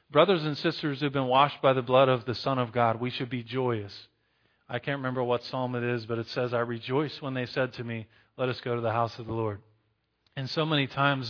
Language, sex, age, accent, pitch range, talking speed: English, male, 40-59, American, 125-155 Hz, 260 wpm